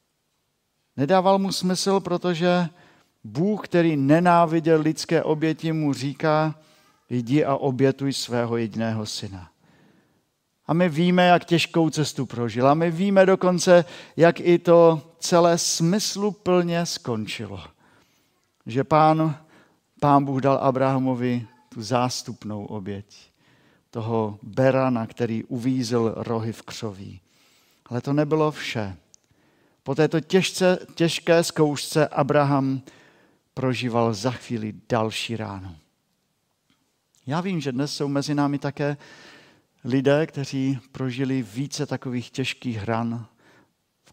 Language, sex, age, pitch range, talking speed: Czech, male, 50-69, 120-160 Hz, 110 wpm